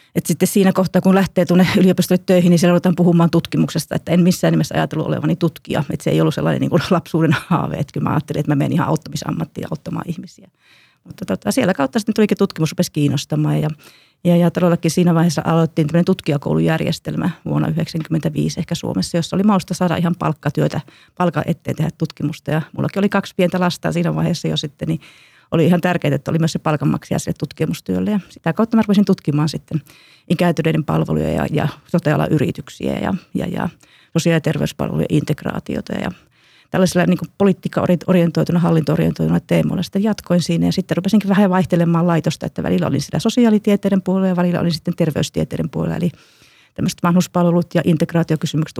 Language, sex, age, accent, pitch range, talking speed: Finnish, female, 30-49, native, 155-180 Hz, 170 wpm